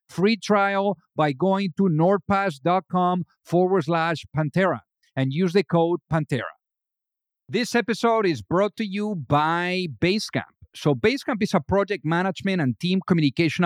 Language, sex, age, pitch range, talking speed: English, male, 50-69, 140-180 Hz, 135 wpm